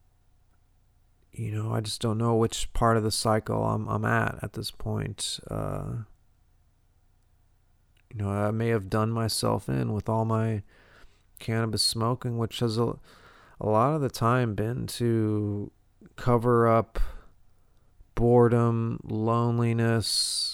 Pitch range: 105-115 Hz